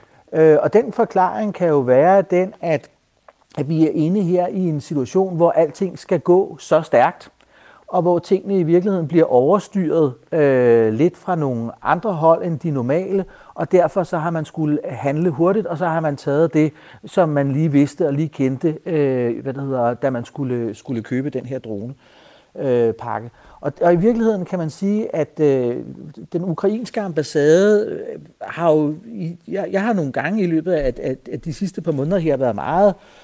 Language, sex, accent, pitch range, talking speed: Danish, male, native, 135-185 Hz, 175 wpm